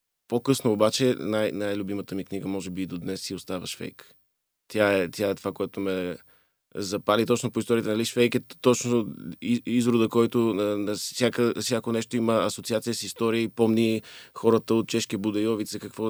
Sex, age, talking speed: male, 20-39, 170 wpm